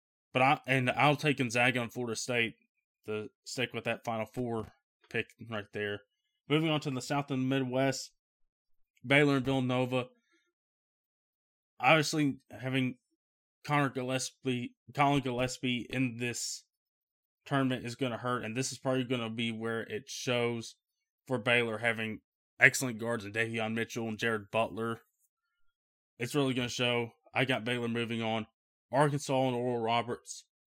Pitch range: 115-135 Hz